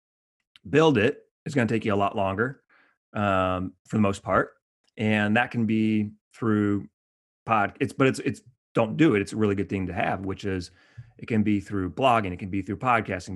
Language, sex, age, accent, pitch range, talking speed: English, male, 30-49, American, 95-110 Hz, 210 wpm